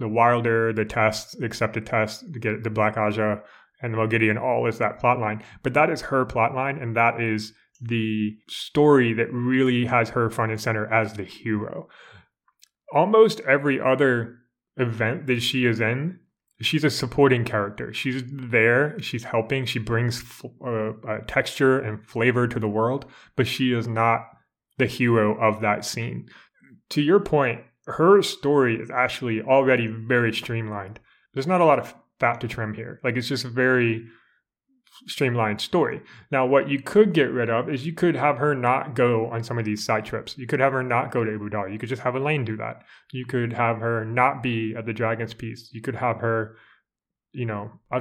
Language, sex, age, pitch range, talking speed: English, male, 20-39, 110-130 Hz, 190 wpm